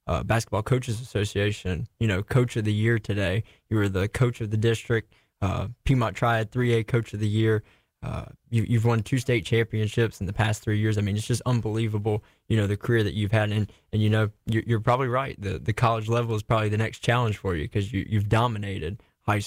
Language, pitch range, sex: English, 105-115 Hz, male